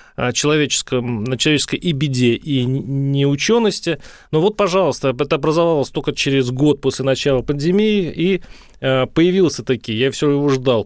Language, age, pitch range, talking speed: Russian, 30-49, 130-175 Hz, 140 wpm